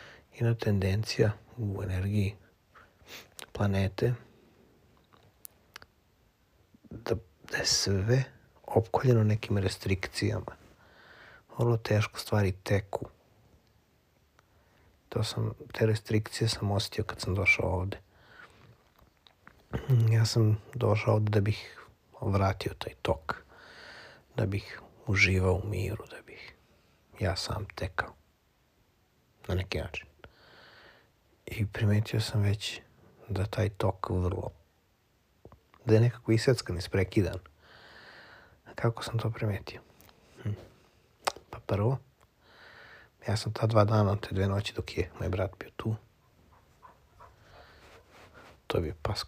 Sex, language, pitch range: male, English, 95-115 Hz